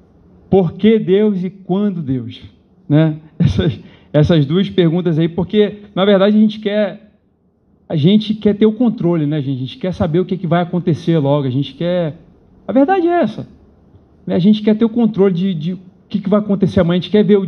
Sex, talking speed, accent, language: male, 225 wpm, Brazilian, Portuguese